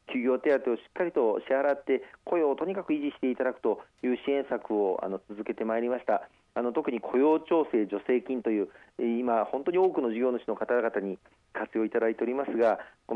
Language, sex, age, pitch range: Japanese, male, 40-59, 110-150 Hz